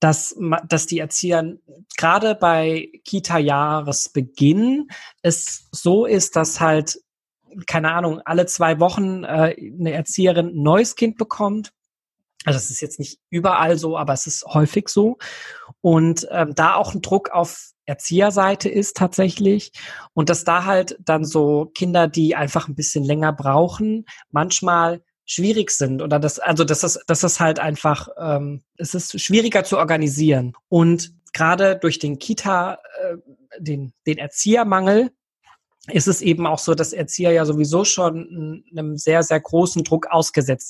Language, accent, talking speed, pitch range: German, German, 150 wpm, 150-185 Hz